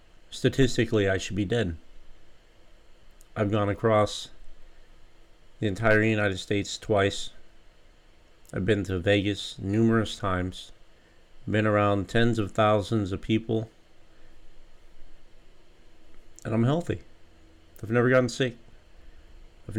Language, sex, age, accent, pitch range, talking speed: English, male, 40-59, American, 90-110 Hz, 105 wpm